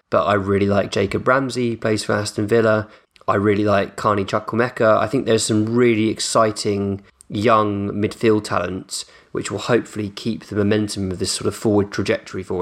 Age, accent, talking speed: 20-39, British, 180 wpm